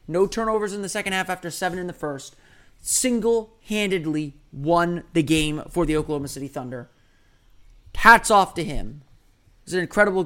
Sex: male